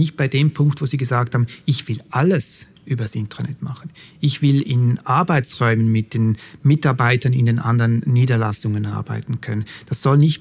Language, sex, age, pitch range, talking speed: German, male, 30-49, 120-150 Hz, 180 wpm